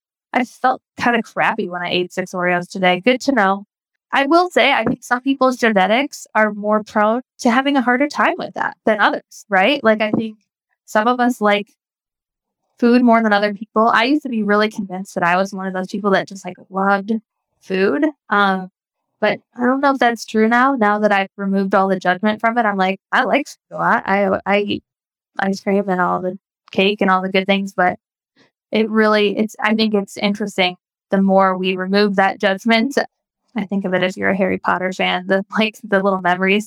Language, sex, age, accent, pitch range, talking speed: English, female, 10-29, American, 190-225 Hz, 220 wpm